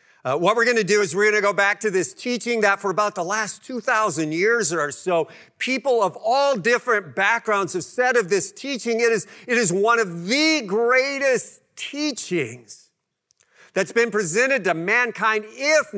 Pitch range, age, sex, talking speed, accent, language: 135-220 Hz, 50-69, male, 180 wpm, American, English